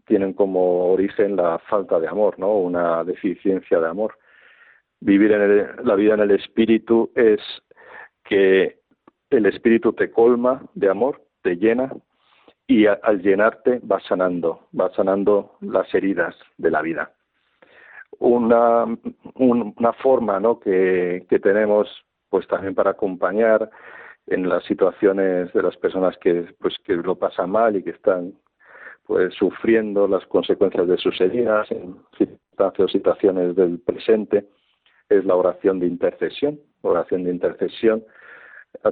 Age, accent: 50-69, Spanish